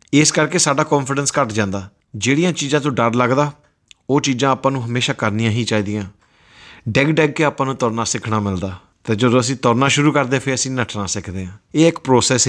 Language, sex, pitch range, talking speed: Punjabi, male, 110-140 Hz, 195 wpm